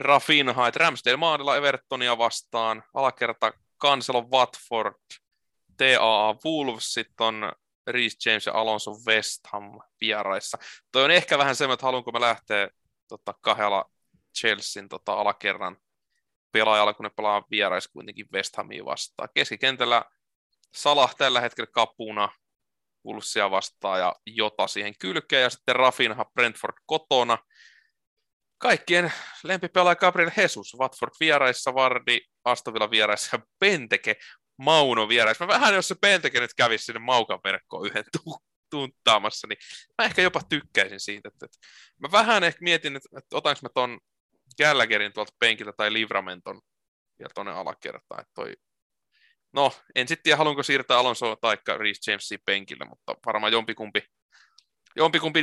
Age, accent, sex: 20-39, native, male